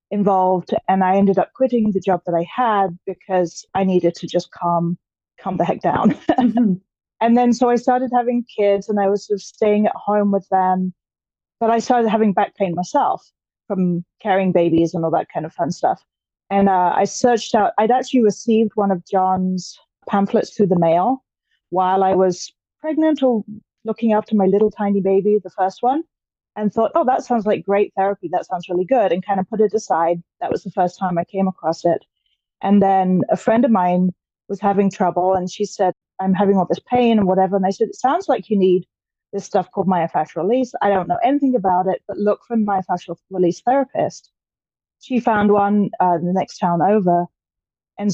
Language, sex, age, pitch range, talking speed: English, female, 30-49, 185-230 Hz, 205 wpm